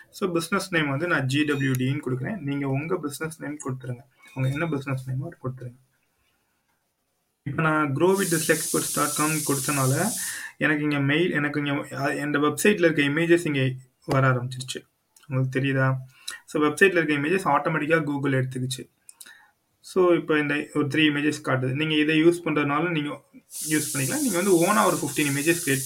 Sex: male